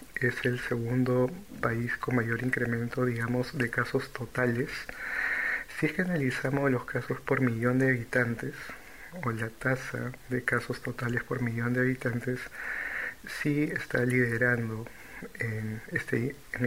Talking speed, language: 135 wpm, Spanish